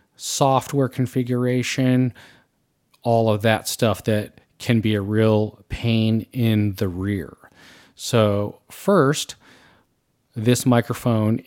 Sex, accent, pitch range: male, American, 105-120 Hz